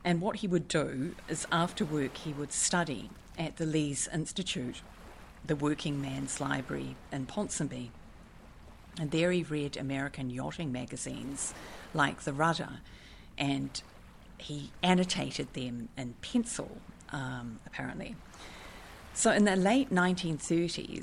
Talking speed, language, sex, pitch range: 125 wpm, English, female, 125-175 Hz